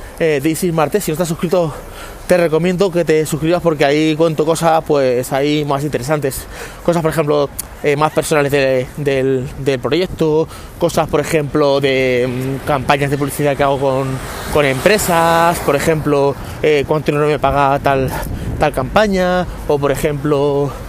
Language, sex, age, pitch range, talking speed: Spanish, male, 20-39, 135-165 Hz, 160 wpm